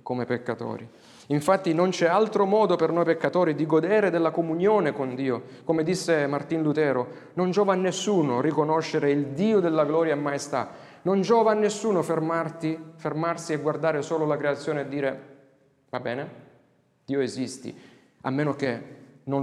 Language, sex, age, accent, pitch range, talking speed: Italian, male, 40-59, native, 135-180 Hz, 160 wpm